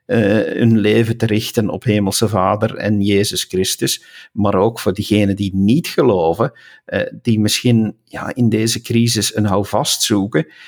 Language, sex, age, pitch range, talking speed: Dutch, male, 50-69, 100-115 Hz, 150 wpm